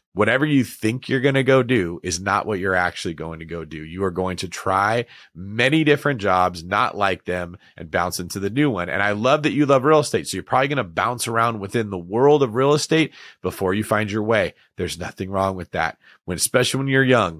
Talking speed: 240 wpm